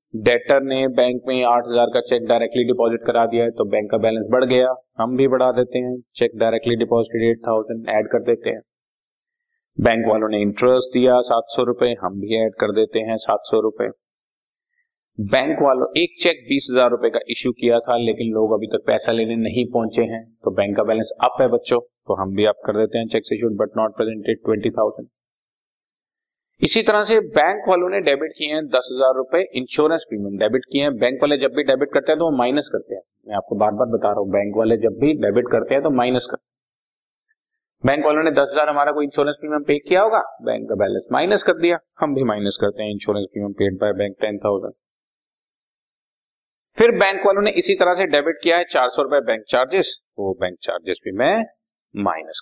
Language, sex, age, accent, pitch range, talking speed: Hindi, male, 30-49, native, 115-155 Hz, 205 wpm